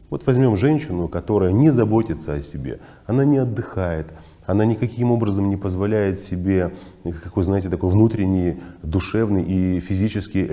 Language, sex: Russian, male